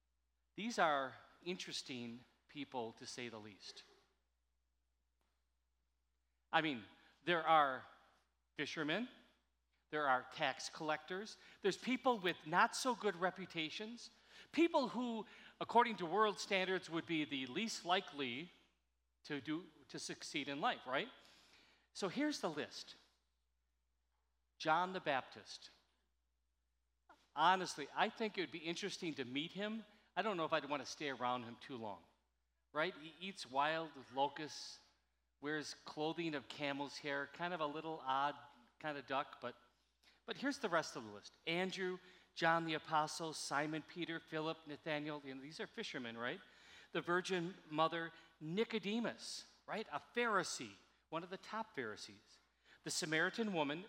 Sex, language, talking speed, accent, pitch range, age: male, English, 140 wpm, American, 125-185 Hz, 40-59